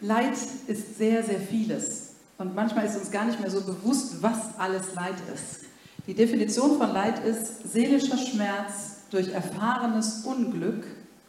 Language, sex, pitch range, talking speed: German, female, 195-240 Hz, 150 wpm